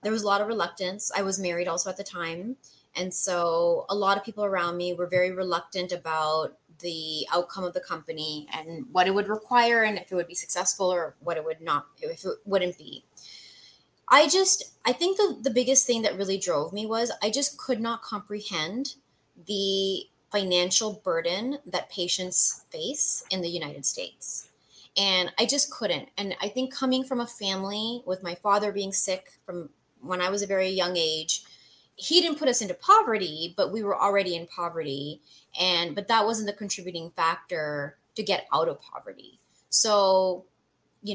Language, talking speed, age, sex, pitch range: English, 185 wpm, 20-39, female, 175-210 Hz